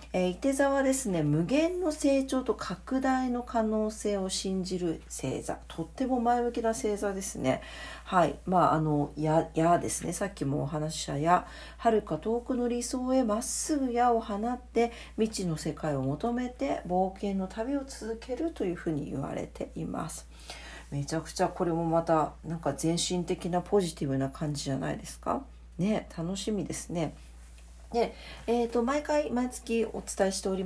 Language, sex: Japanese, female